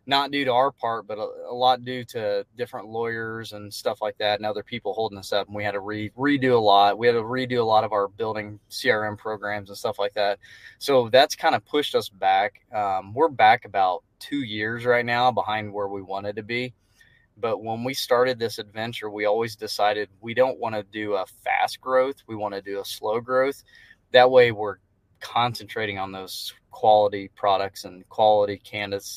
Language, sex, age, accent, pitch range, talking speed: English, male, 20-39, American, 105-120 Hz, 210 wpm